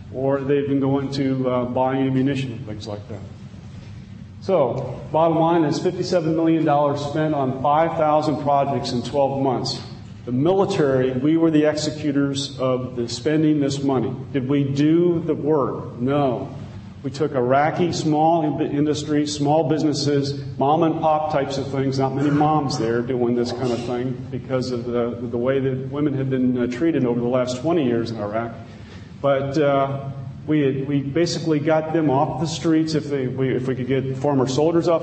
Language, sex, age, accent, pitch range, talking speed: English, male, 40-59, American, 130-155 Hz, 170 wpm